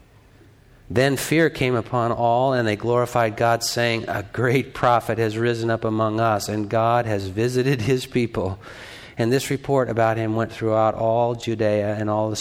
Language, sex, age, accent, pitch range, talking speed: English, male, 50-69, American, 115-145 Hz, 175 wpm